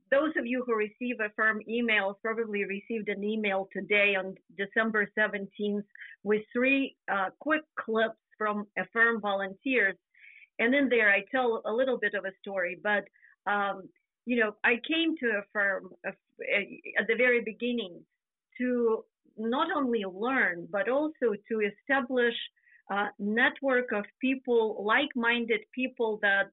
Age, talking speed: 50-69, 145 wpm